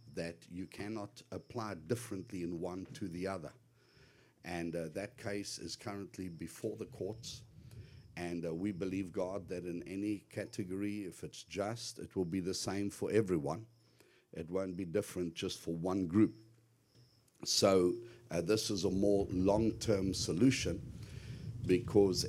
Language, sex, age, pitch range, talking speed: English, male, 60-79, 90-115 Hz, 150 wpm